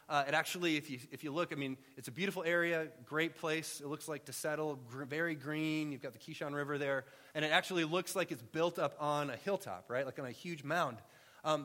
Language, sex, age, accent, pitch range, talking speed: English, male, 30-49, American, 120-155 Hz, 245 wpm